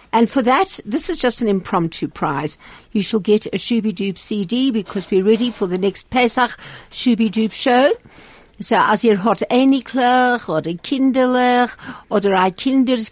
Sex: female